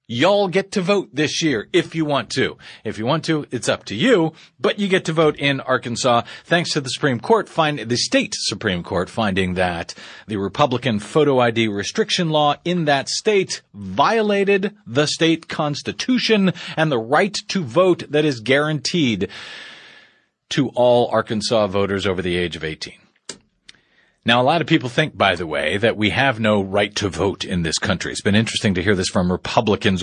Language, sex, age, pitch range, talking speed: English, male, 40-59, 105-160 Hz, 190 wpm